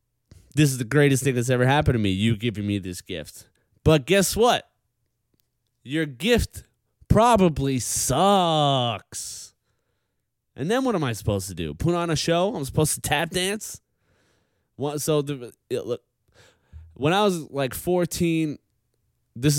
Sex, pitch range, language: male, 95-130 Hz, English